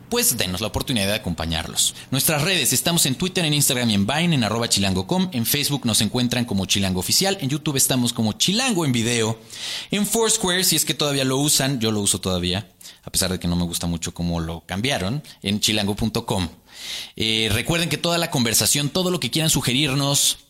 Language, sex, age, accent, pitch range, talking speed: Spanish, male, 30-49, Mexican, 100-145 Hz, 200 wpm